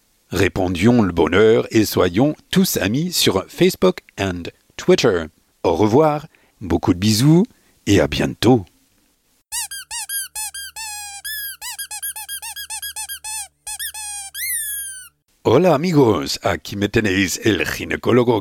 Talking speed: 85 wpm